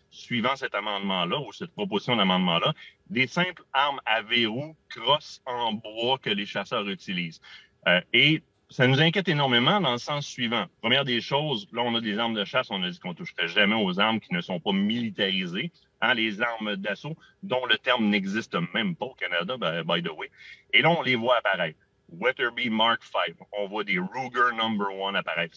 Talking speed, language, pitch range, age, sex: 205 wpm, French, 110-160 Hz, 30-49, male